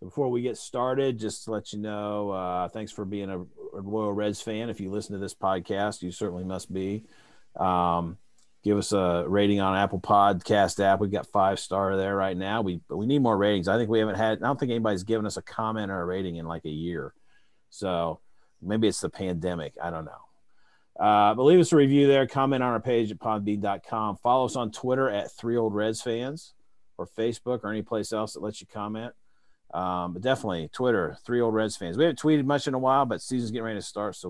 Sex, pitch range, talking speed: male, 95-115 Hz, 225 wpm